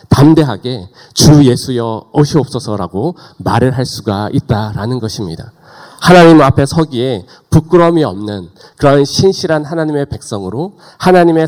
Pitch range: 115-155 Hz